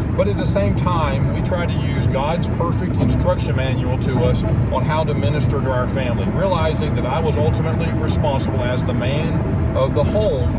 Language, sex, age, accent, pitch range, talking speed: English, male, 50-69, American, 110-130 Hz, 195 wpm